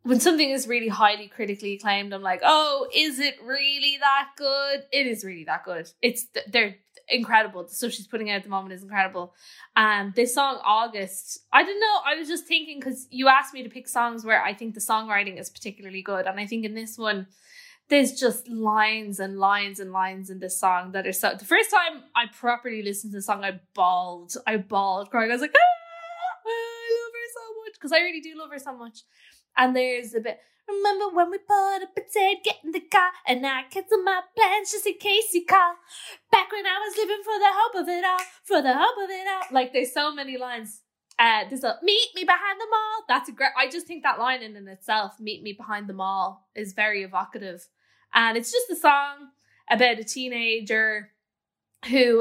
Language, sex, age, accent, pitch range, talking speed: English, female, 10-29, Irish, 200-295 Hz, 220 wpm